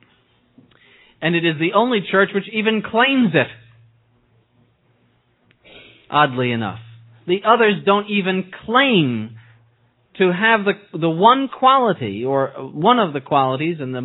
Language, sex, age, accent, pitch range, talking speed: English, male, 40-59, American, 125-200 Hz, 130 wpm